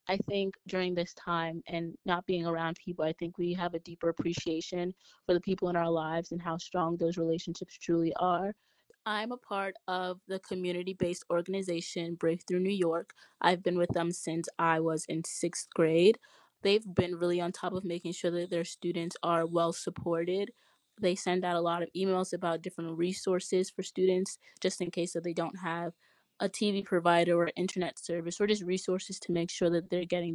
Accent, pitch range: American, 170-185 Hz